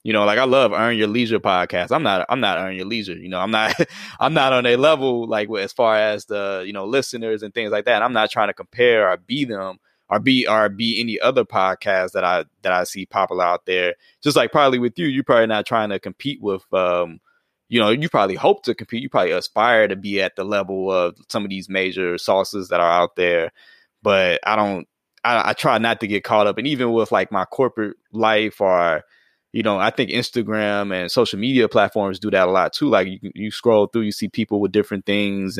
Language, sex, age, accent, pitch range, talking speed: English, male, 20-39, American, 95-115 Hz, 240 wpm